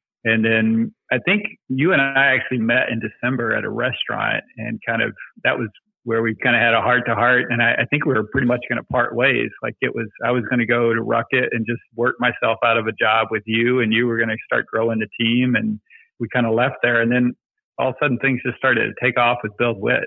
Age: 40-59